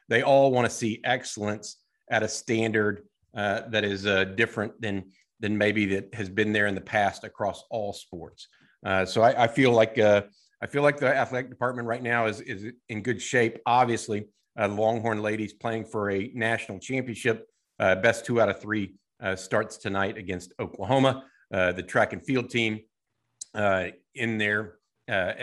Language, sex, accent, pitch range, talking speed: English, male, American, 105-125 Hz, 180 wpm